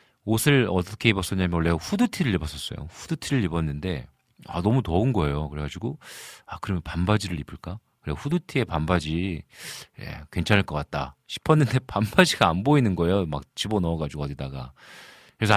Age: 40-59